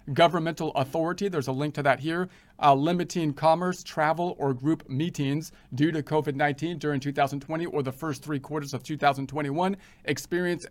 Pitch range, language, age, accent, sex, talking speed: 145-175 Hz, English, 40-59, American, male, 155 wpm